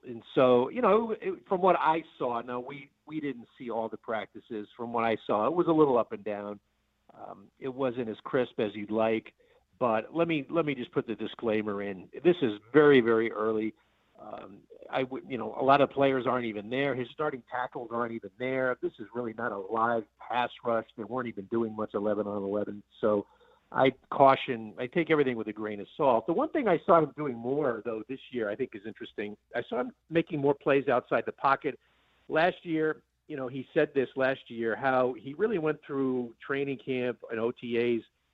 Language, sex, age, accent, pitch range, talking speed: English, male, 50-69, American, 110-140 Hz, 210 wpm